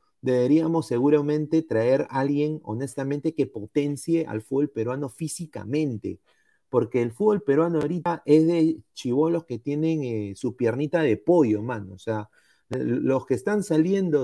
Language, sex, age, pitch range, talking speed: Spanish, male, 30-49, 125-170 Hz, 145 wpm